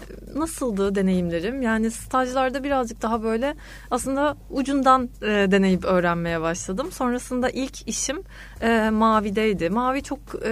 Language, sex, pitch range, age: Turkish, female, 185-245 Hz, 30-49